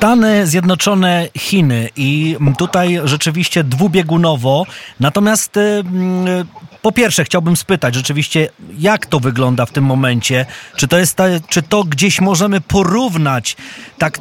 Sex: male